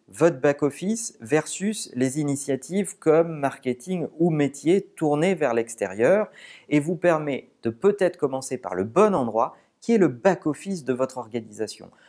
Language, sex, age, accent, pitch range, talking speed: French, male, 40-59, French, 130-190 Hz, 145 wpm